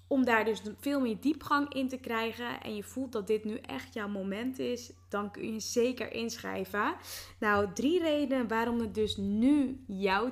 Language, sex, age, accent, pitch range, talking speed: Dutch, female, 10-29, Dutch, 200-245 Hz, 190 wpm